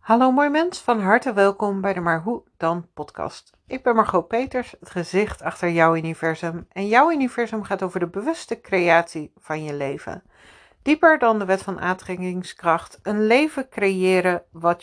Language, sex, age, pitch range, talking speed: Dutch, female, 60-79, 175-235 Hz, 170 wpm